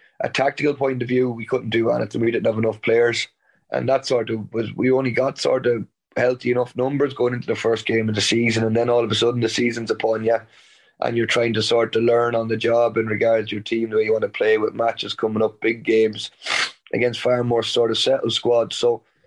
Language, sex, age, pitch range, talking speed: English, male, 20-39, 110-125 Hz, 250 wpm